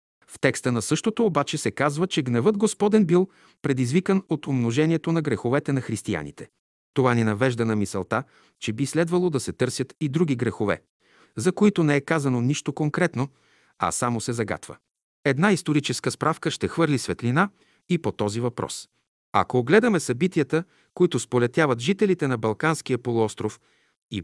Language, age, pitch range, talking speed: Bulgarian, 50-69, 125-175 Hz, 155 wpm